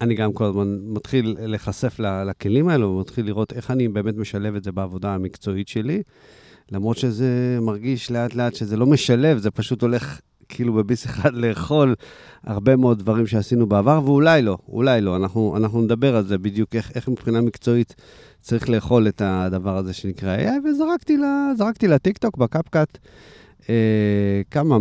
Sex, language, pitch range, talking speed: male, Hebrew, 110-145 Hz, 150 wpm